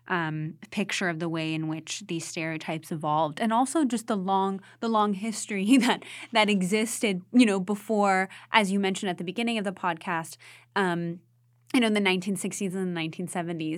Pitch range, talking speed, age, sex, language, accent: 175-220 Hz, 180 wpm, 20-39, female, English, American